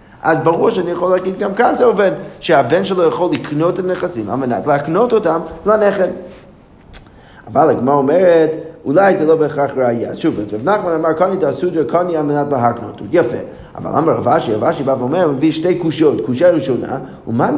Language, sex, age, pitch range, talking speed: Hebrew, male, 30-49, 145-195 Hz, 185 wpm